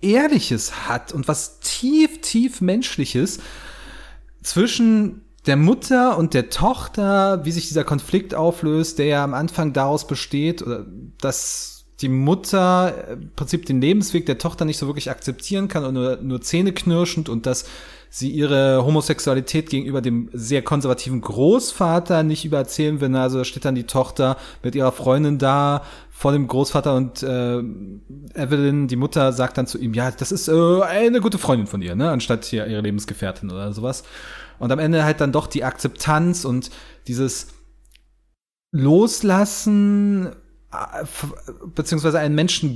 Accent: German